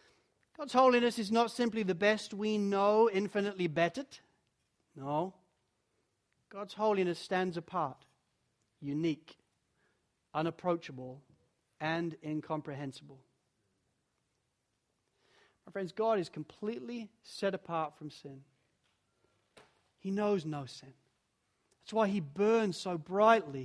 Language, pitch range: English, 160-225 Hz